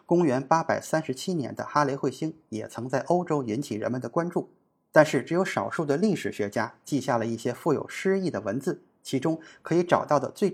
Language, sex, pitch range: Chinese, male, 135-175 Hz